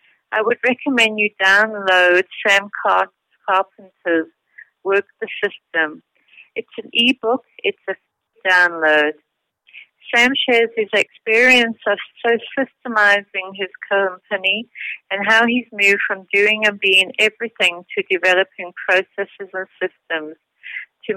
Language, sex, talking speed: English, female, 115 wpm